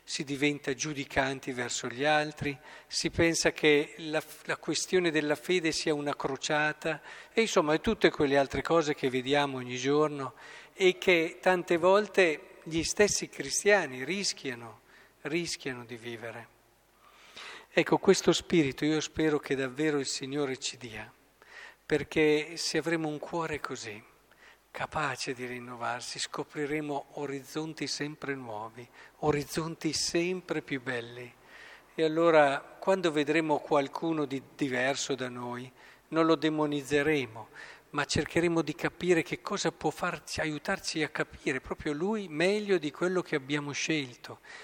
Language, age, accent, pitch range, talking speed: Italian, 50-69, native, 140-170 Hz, 130 wpm